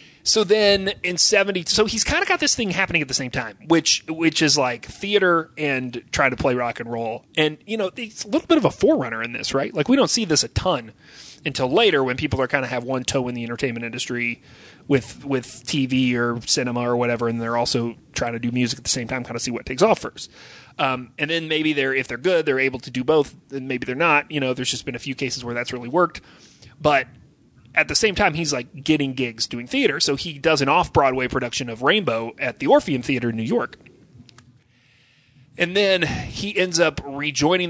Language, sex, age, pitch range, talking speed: English, male, 30-49, 125-165 Hz, 235 wpm